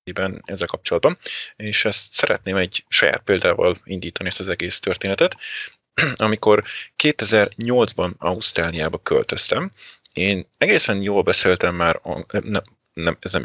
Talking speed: 110 wpm